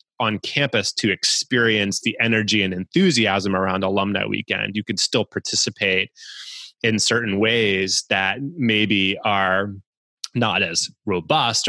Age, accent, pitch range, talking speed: 20-39, American, 95-110 Hz, 125 wpm